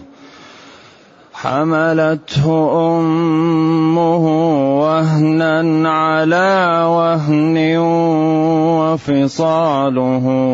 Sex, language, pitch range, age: male, Arabic, 155-175 Hz, 30-49